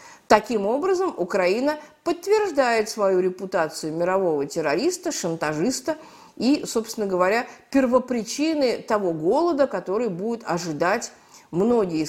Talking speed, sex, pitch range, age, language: 95 wpm, female, 185-280 Hz, 50-69, Russian